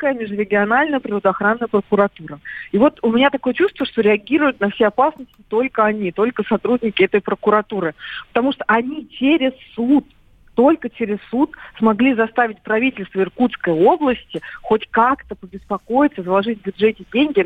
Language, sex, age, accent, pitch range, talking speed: Russian, female, 40-59, native, 205-270 Hz, 135 wpm